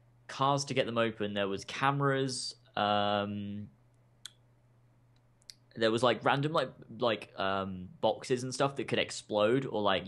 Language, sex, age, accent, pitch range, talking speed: English, male, 10-29, British, 110-130 Hz, 145 wpm